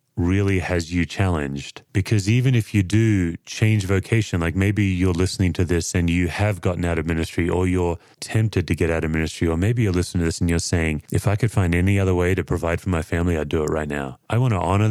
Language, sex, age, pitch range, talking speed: English, male, 30-49, 85-105 Hz, 250 wpm